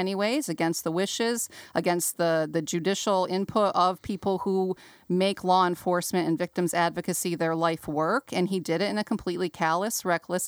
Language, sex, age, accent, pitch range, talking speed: English, female, 40-59, American, 170-215 Hz, 170 wpm